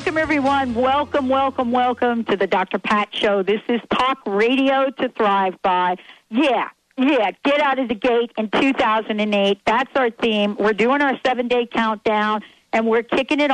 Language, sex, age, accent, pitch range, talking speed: English, female, 50-69, American, 205-260 Hz, 170 wpm